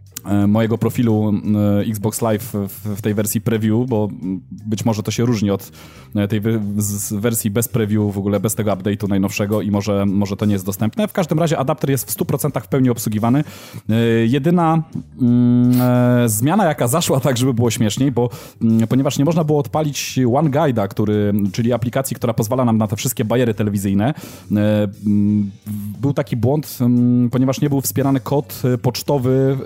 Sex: male